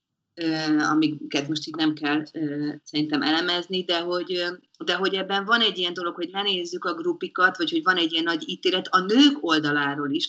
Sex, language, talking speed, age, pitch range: female, Hungarian, 175 wpm, 30-49, 155-190 Hz